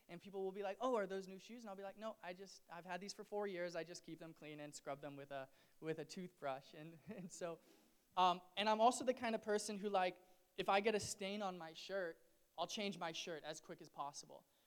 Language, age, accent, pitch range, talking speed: English, 20-39, American, 170-210 Hz, 265 wpm